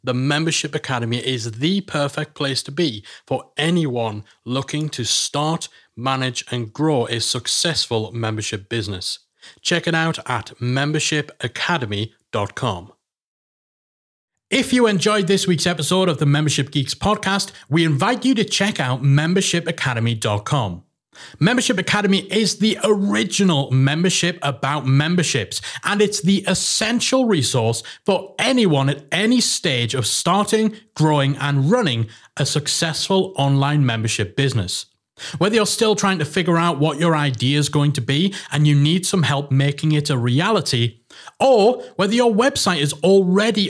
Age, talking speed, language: 30-49, 140 wpm, English